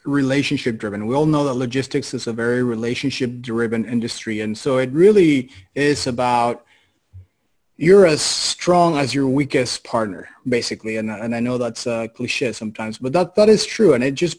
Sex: male